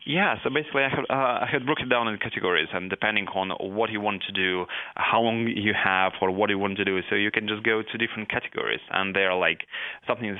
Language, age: English, 30-49